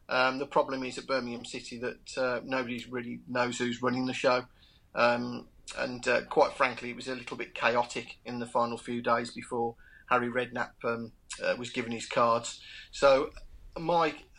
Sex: male